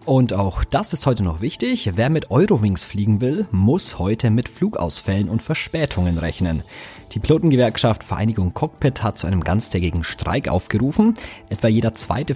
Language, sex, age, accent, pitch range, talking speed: German, male, 30-49, German, 90-120 Hz, 155 wpm